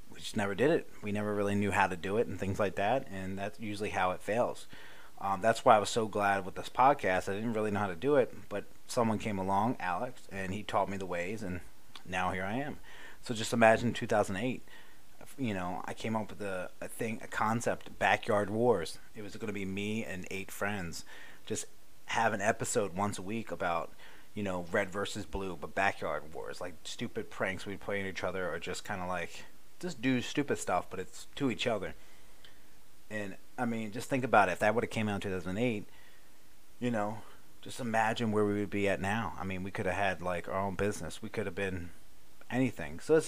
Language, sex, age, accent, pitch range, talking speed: English, male, 30-49, American, 95-110 Hz, 225 wpm